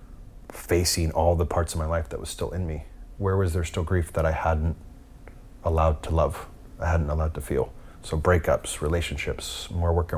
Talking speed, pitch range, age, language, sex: 195 wpm, 80-95 Hz, 30-49, English, male